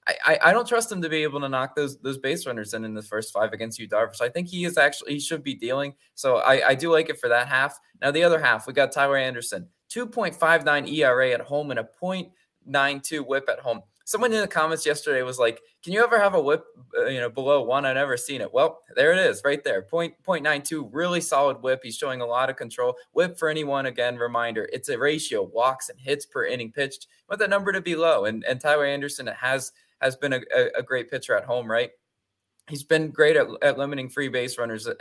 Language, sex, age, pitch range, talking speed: English, male, 20-39, 125-180 Hz, 245 wpm